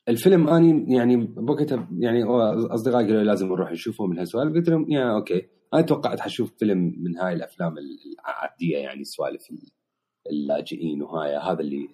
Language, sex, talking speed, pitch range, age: Arabic, male, 150 wpm, 85-120 Hz, 30-49